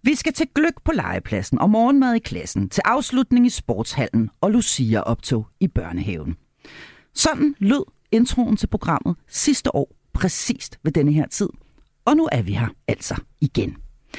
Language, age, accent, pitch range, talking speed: Danish, 40-59, native, 150-240 Hz, 160 wpm